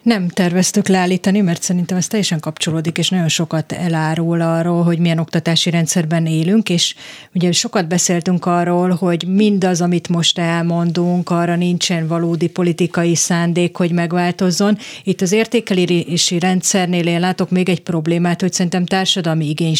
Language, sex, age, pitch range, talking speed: Hungarian, female, 30-49, 165-185 Hz, 145 wpm